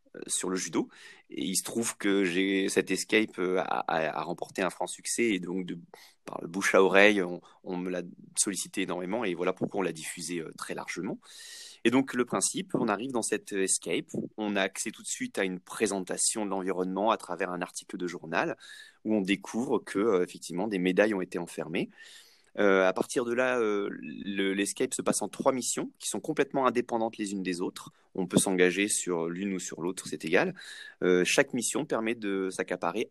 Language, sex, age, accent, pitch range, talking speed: English, male, 30-49, French, 90-110 Hz, 205 wpm